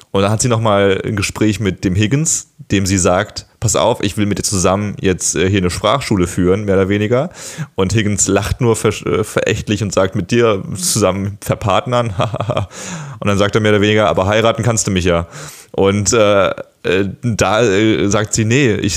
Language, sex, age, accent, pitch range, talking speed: German, male, 30-49, German, 100-130 Hz, 200 wpm